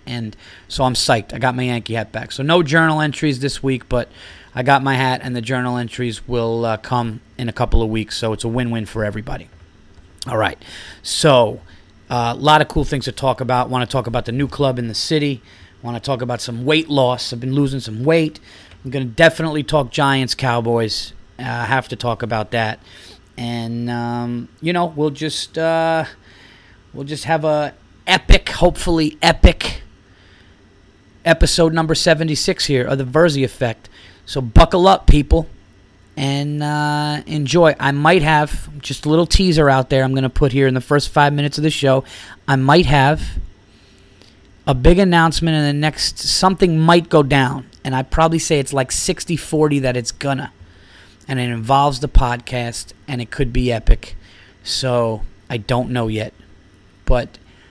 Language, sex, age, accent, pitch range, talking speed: English, male, 30-49, American, 110-145 Hz, 185 wpm